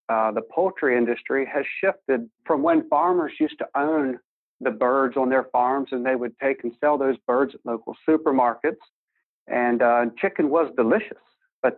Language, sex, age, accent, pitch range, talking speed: English, male, 40-59, American, 125-155 Hz, 175 wpm